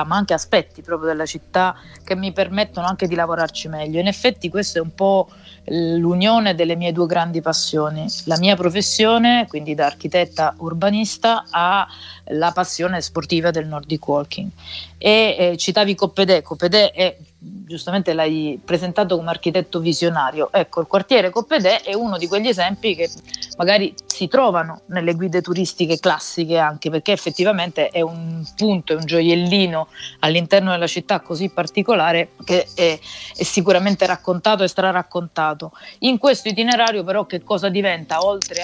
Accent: native